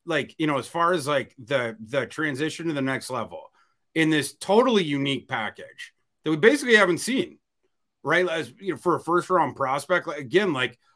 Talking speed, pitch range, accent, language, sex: 190 wpm, 140-180 Hz, American, English, male